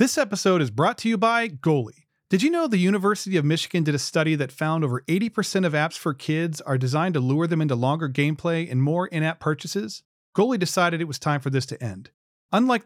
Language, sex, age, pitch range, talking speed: English, male, 40-59, 145-190 Hz, 225 wpm